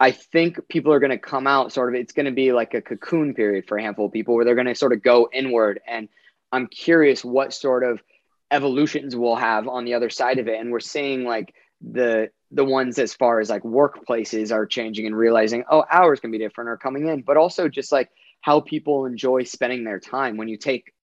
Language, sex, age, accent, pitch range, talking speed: English, male, 20-39, American, 115-135 Hz, 235 wpm